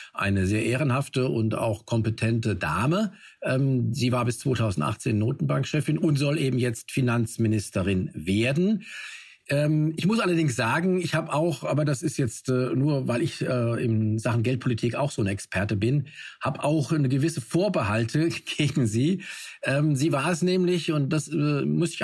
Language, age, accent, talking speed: German, 50-69, German, 150 wpm